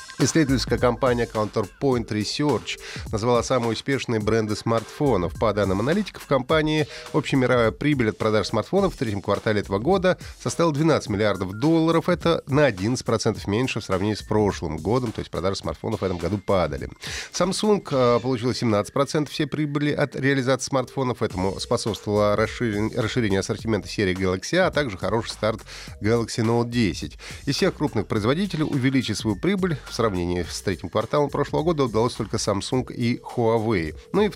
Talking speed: 160 wpm